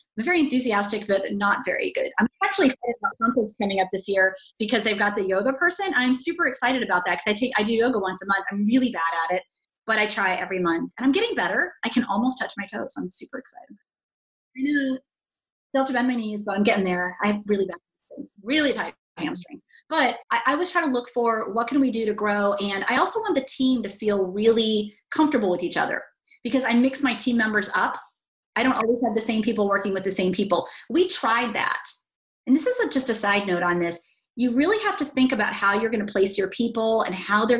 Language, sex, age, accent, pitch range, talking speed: English, female, 30-49, American, 200-270 Hz, 245 wpm